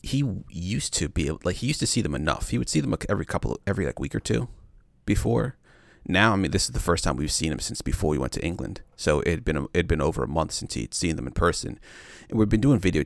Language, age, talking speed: English, 30-49, 280 wpm